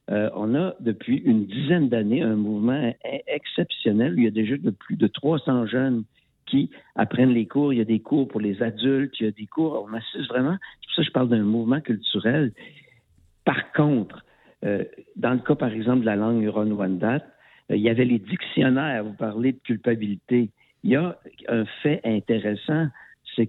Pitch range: 110-135 Hz